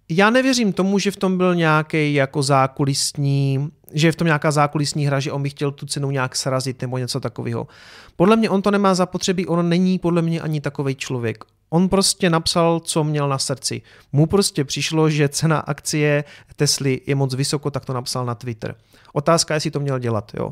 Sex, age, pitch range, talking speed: male, 30-49, 145-175 Hz, 200 wpm